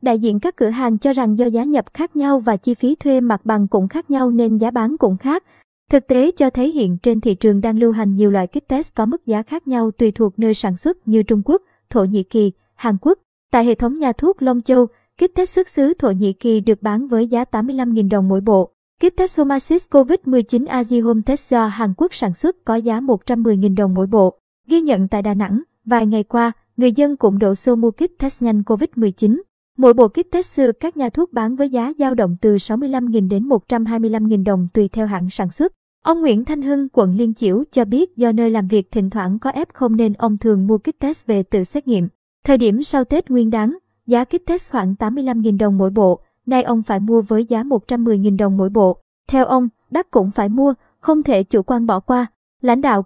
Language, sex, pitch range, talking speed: Vietnamese, male, 215-270 Hz, 235 wpm